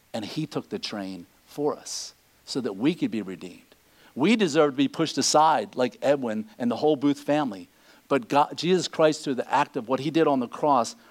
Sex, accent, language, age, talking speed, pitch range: male, American, English, 50-69, 215 wpm, 145-195 Hz